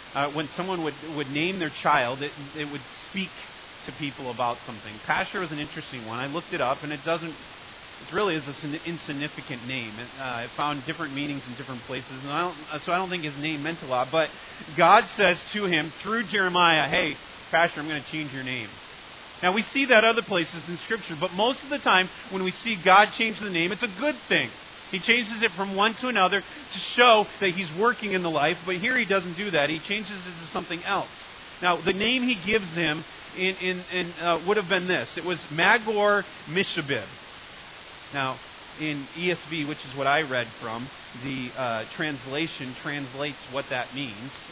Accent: American